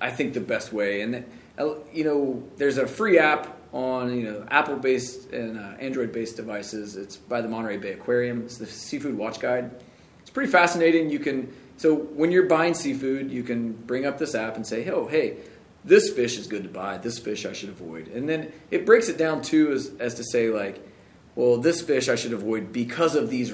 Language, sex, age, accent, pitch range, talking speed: English, male, 30-49, American, 115-150 Hz, 210 wpm